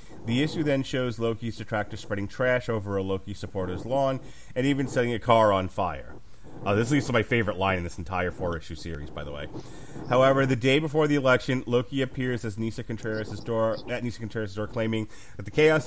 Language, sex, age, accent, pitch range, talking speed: English, male, 30-49, American, 105-130 Hz, 210 wpm